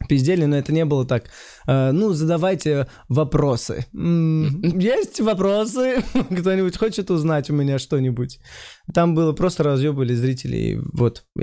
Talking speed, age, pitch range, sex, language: 120 wpm, 20-39, 115-145 Hz, male, Russian